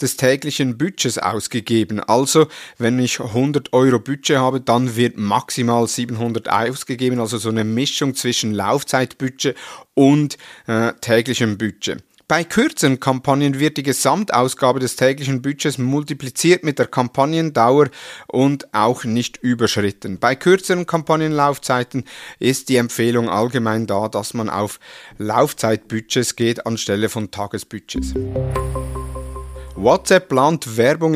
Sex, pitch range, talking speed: male, 120-145 Hz, 120 wpm